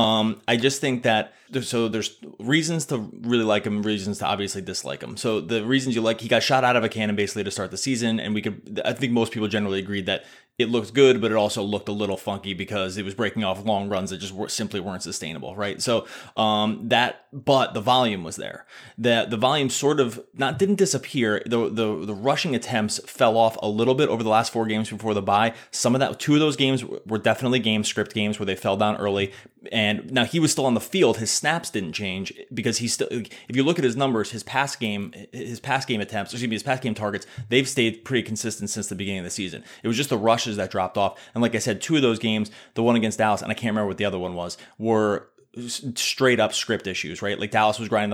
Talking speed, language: 255 wpm, English